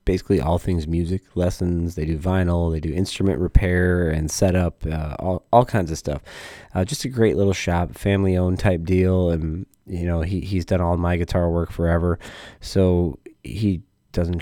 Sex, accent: male, American